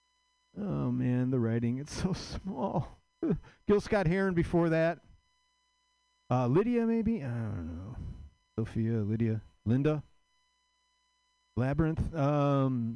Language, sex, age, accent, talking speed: English, male, 40-59, American, 95 wpm